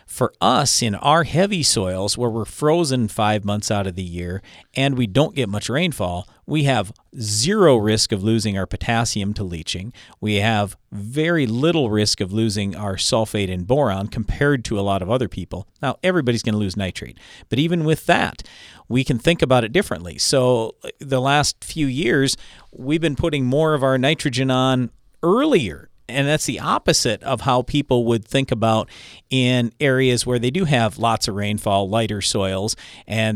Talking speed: 180 wpm